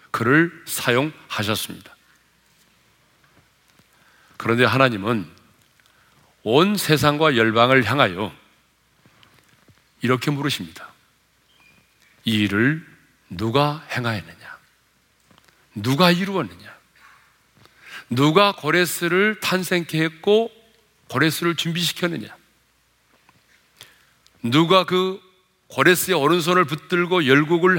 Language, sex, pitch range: Korean, male, 135-185 Hz